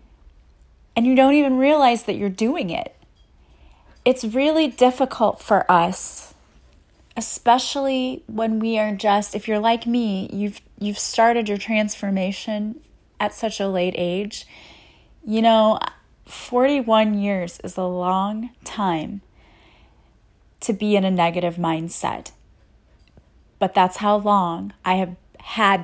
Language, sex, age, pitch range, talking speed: English, female, 30-49, 185-220 Hz, 125 wpm